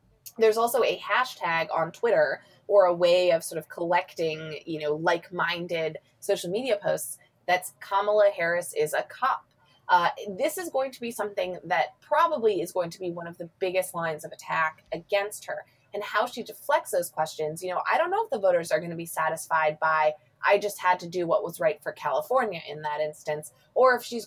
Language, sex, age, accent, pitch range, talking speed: English, female, 20-39, American, 160-220 Hz, 205 wpm